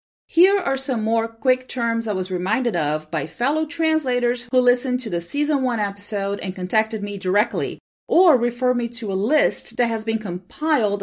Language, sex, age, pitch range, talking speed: English, female, 30-49, 190-275 Hz, 185 wpm